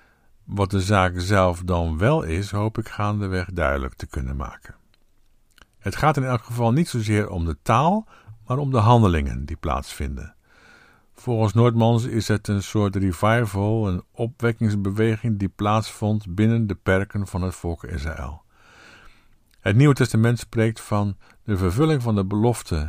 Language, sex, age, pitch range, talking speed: Dutch, male, 50-69, 90-115 Hz, 150 wpm